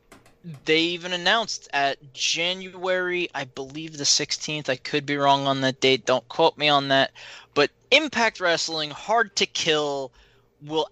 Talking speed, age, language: 155 wpm, 20-39, English